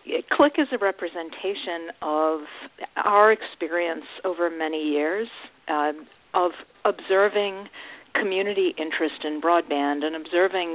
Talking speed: 105 wpm